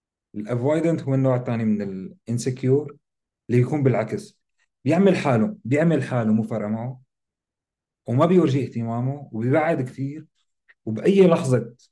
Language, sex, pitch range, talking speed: Arabic, male, 110-155 Hz, 110 wpm